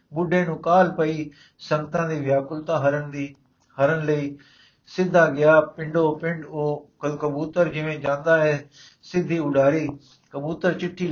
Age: 60-79